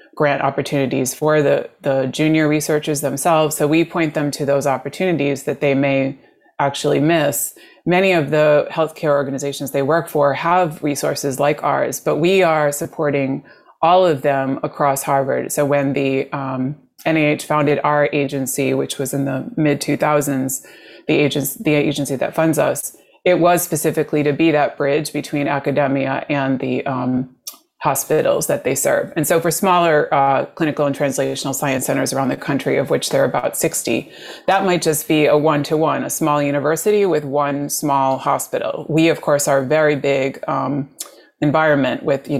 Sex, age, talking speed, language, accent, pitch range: female, 30-49, 170 wpm, English, American, 140-160 Hz